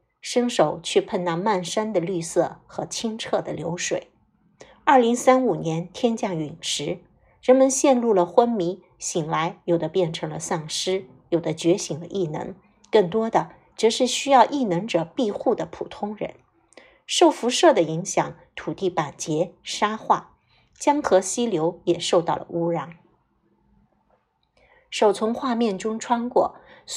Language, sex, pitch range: Chinese, female, 175-255 Hz